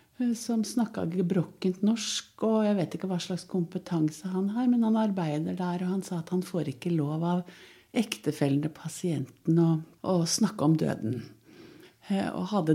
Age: 60-79